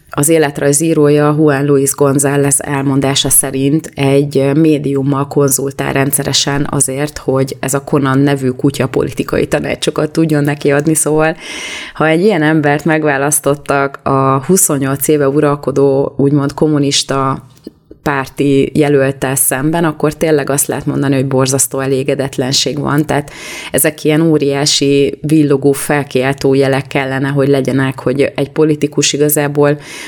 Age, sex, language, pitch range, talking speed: 30-49, female, Hungarian, 135-150 Hz, 120 wpm